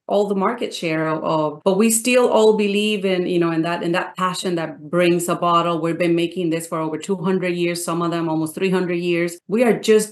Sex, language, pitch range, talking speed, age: female, English, 175-205 Hz, 230 wpm, 30-49